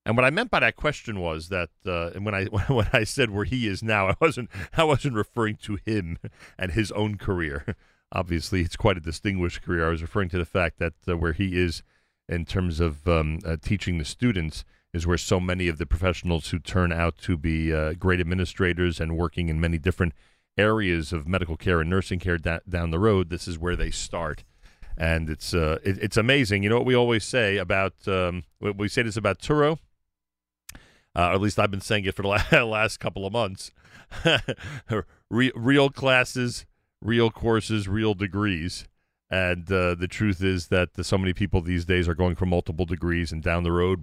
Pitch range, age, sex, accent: 85-110 Hz, 40-59, male, American